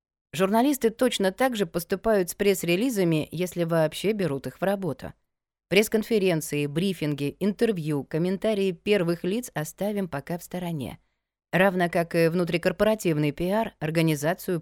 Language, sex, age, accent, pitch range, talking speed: Russian, female, 20-39, native, 150-195 Hz, 120 wpm